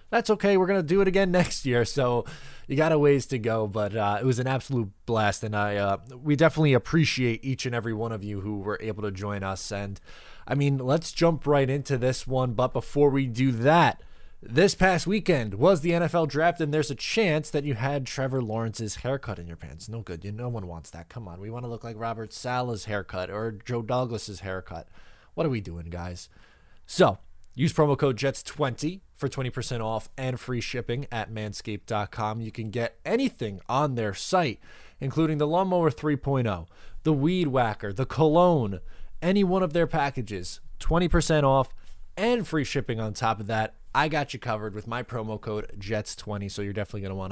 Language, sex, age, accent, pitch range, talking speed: English, male, 20-39, American, 105-150 Hz, 200 wpm